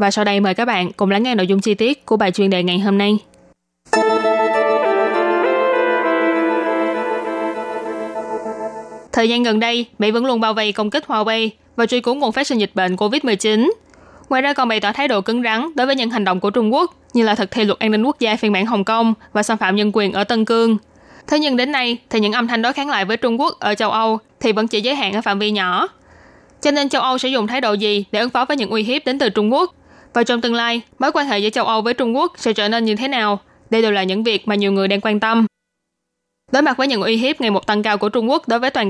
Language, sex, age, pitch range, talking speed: Vietnamese, female, 20-39, 210-245 Hz, 265 wpm